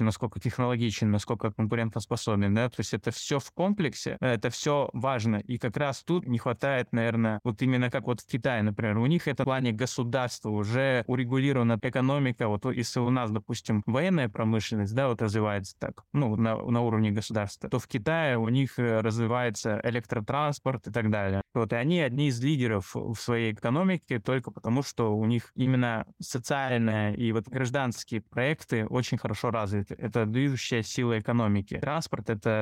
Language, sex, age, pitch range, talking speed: Russian, male, 20-39, 110-130 Hz, 170 wpm